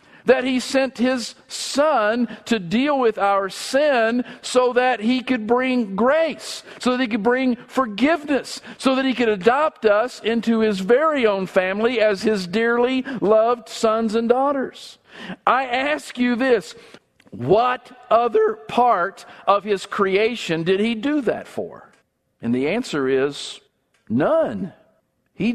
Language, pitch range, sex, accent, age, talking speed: English, 155-245 Hz, male, American, 50-69, 145 wpm